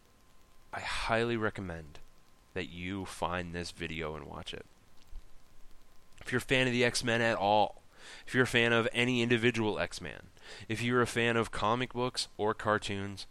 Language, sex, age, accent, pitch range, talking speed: English, male, 30-49, American, 95-120 Hz, 165 wpm